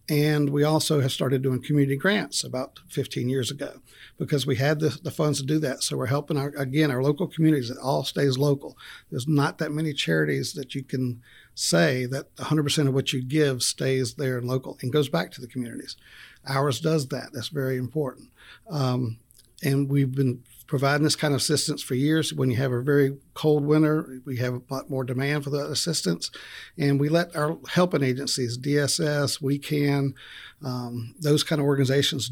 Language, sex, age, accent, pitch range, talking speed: English, male, 60-79, American, 130-150 Hz, 195 wpm